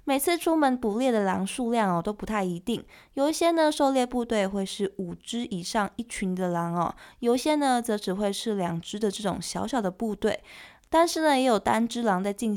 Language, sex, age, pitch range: Chinese, female, 20-39, 190-250 Hz